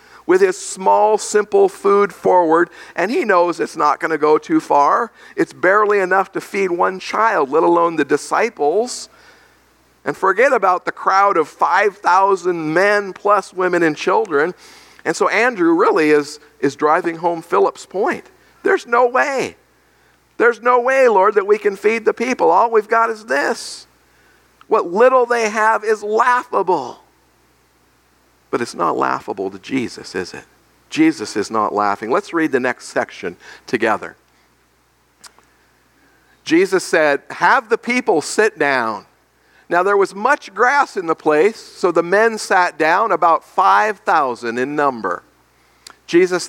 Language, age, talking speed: English, 50-69, 150 wpm